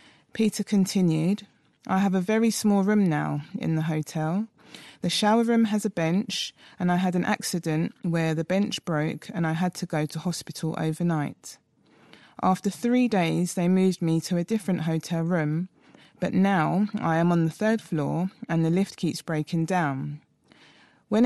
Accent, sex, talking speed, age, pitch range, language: British, female, 170 wpm, 20-39, 160-195 Hz, English